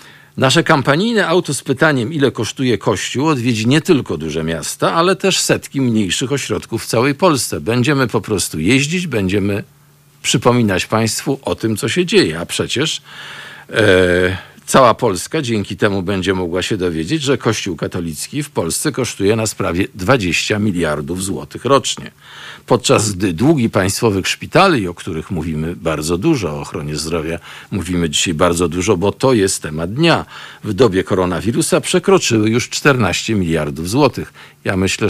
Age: 50-69